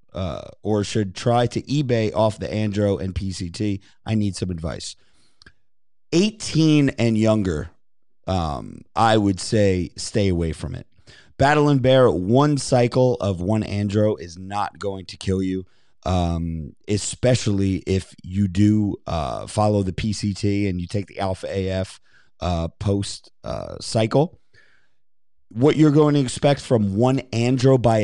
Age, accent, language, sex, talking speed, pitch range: 30-49, American, English, male, 145 wpm, 95-120 Hz